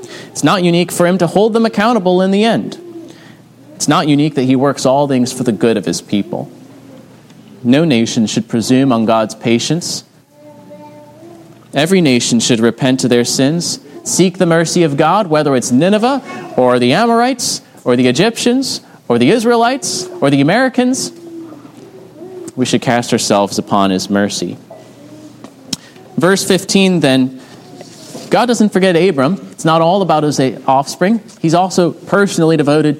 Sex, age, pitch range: male, 30-49, 125-190 Hz